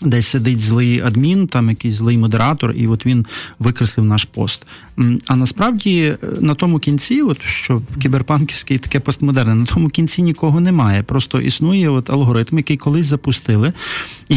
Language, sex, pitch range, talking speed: Russian, male, 120-155 Hz, 150 wpm